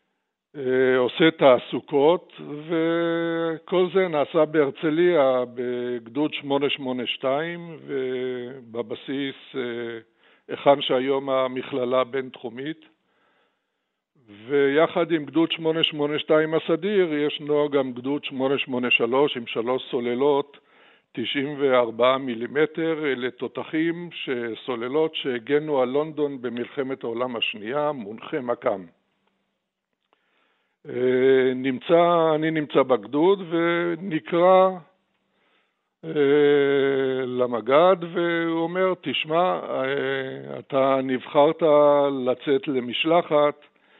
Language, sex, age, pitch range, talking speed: Hebrew, male, 60-79, 130-160 Hz, 70 wpm